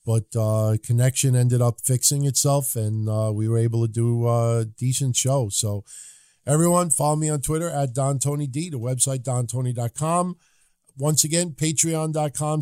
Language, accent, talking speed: English, American, 155 wpm